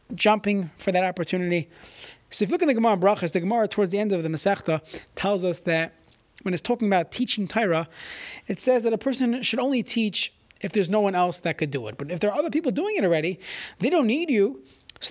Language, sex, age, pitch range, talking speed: English, male, 30-49, 170-225 Hz, 240 wpm